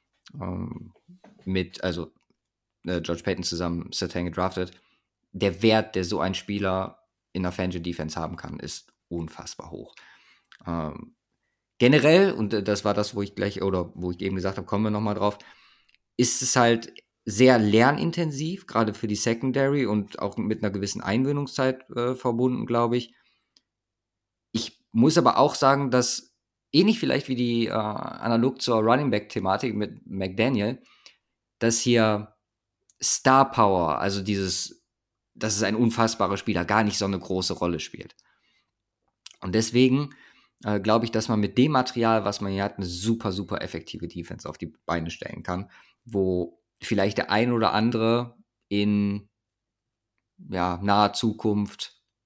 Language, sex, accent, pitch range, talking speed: German, male, German, 95-120 Hz, 150 wpm